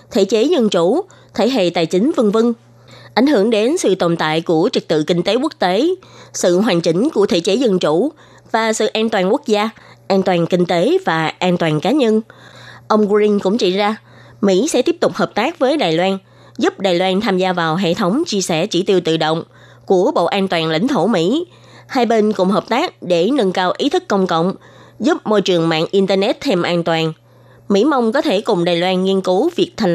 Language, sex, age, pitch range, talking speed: Vietnamese, female, 20-39, 175-220 Hz, 225 wpm